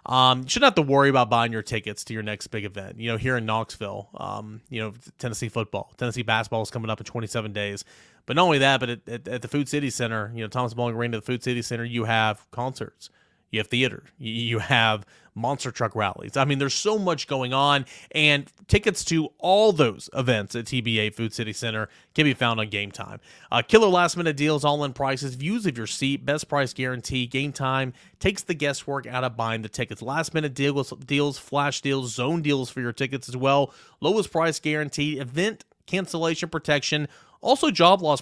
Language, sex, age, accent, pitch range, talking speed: English, male, 30-49, American, 120-160 Hz, 210 wpm